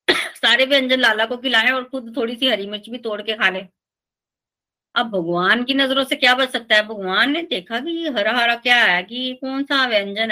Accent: native